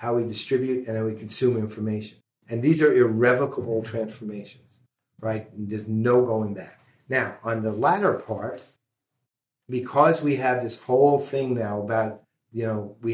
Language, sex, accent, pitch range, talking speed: English, male, American, 110-130 Hz, 155 wpm